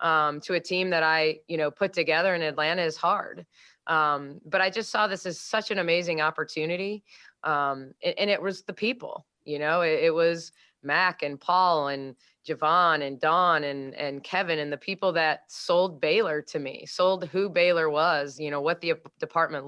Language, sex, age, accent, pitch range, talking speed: English, female, 20-39, American, 155-185 Hz, 190 wpm